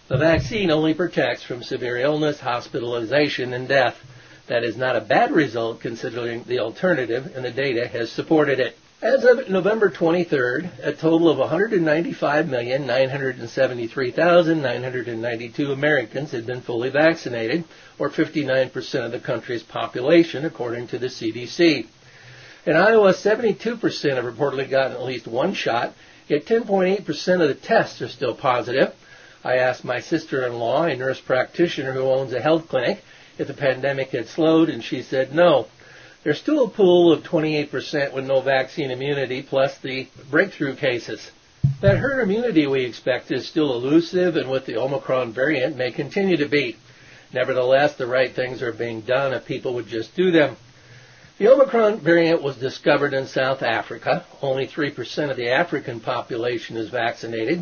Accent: American